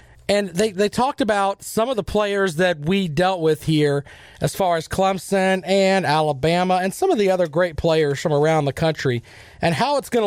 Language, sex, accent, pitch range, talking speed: English, male, American, 160-205 Hz, 205 wpm